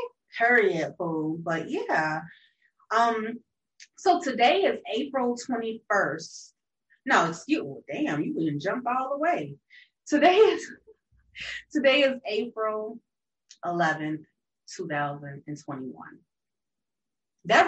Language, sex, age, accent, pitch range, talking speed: English, female, 30-49, American, 155-220 Hz, 90 wpm